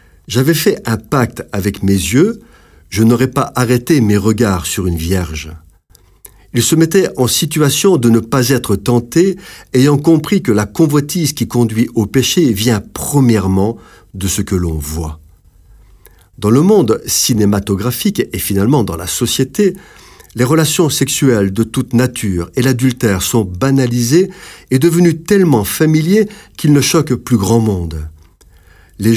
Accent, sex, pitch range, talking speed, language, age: French, male, 95-135 Hz, 150 wpm, French, 50-69